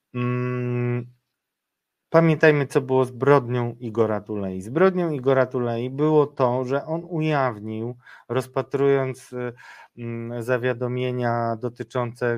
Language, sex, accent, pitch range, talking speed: Polish, male, native, 110-145 Hz, 80 wpm